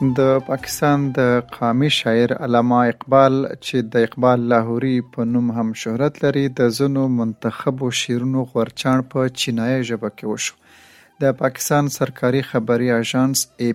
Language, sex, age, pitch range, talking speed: Urdu, male, 40-59, 115-140 Hz, 140 wpm